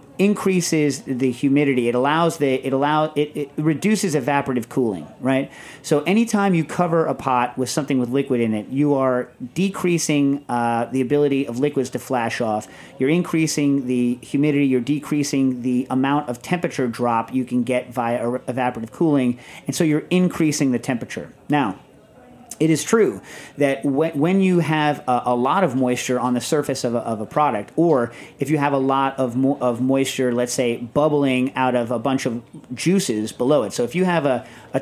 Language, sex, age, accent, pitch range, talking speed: English, male, 40-59, American, 125-155 Hz, 185 wpm